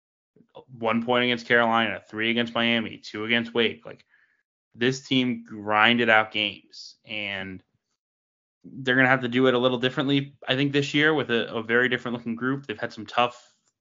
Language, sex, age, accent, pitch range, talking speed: English, male, 20-39, American, 110-125 Hz, 180 wpm